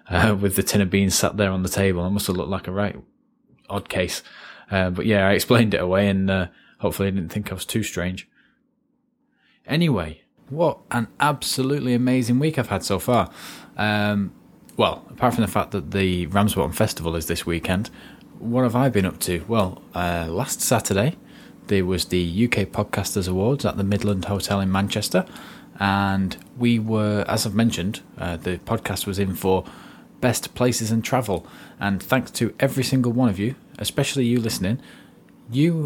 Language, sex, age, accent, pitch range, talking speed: English, male, 20-39, British, 95-120 Hz, 185 wpm